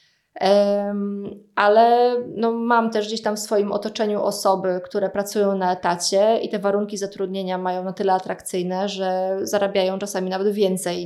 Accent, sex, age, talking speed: native, female, 20-39, 140 wpm